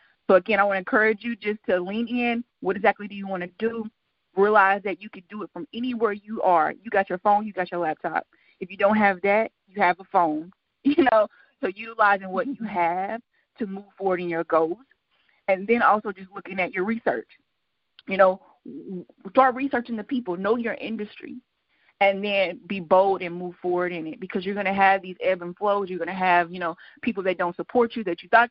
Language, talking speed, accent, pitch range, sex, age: English, 225 wpm, American, 175-225 Hz, female, 30-49